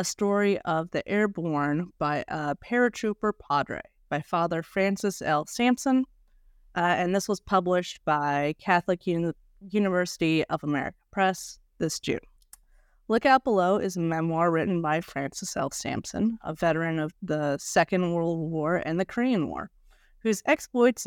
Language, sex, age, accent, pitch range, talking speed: English, female, 30-49, American, 160-205 Hz, 145 wpm